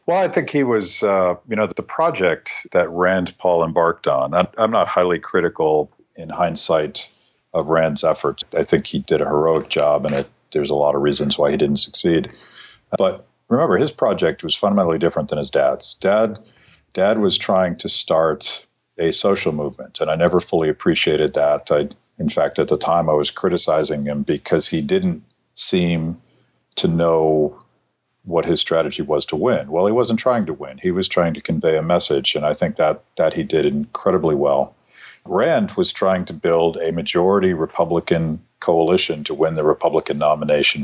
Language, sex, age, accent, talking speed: English, male, 50-69, American, 185 wpm